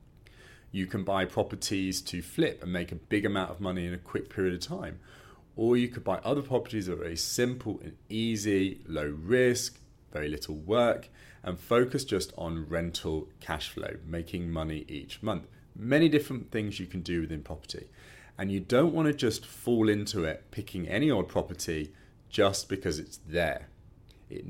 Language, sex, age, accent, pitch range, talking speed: English, male, 40-59, British, 85-120 Hz, 180 wpm